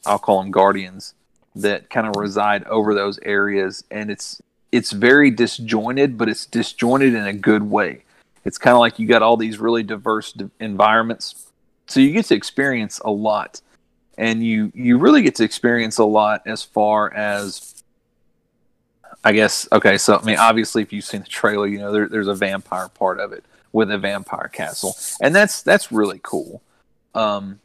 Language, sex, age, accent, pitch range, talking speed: English, male, 40-59, American, 105-120 Hz, 180 wpm